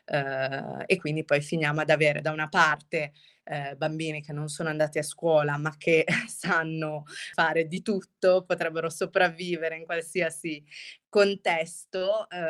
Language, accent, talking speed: Italian, native, 130 wpm